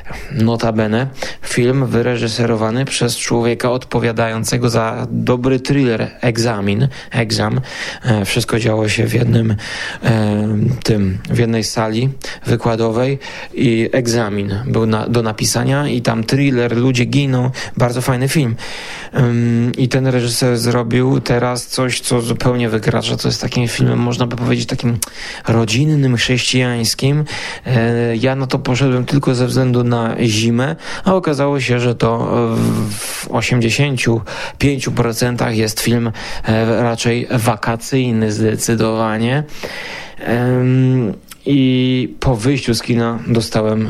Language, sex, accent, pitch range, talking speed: Polish, male, native, 115-125 Hz, 110 wpm